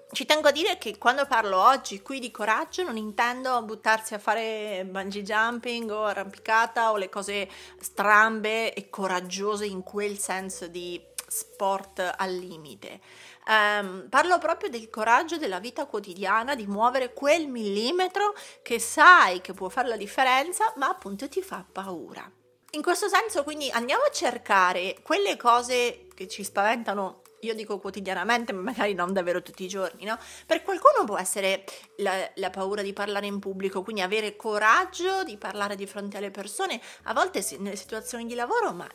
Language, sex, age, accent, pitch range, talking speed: Italian, female, 30-49, native, 200-260 Hz, 165 wpm